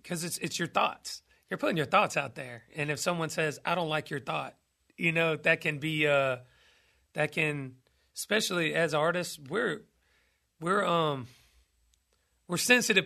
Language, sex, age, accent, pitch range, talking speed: English, male, 40-59, American, 140-170 Hz, 165 wpm